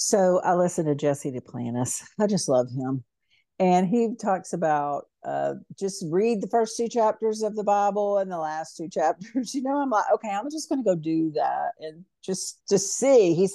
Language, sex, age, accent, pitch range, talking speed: English, female, 50-69, American, 160-205 Hz, 205 wpm